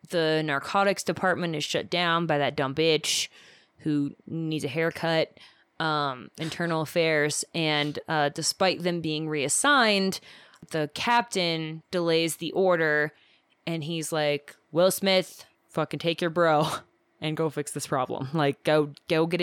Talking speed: 140 wpm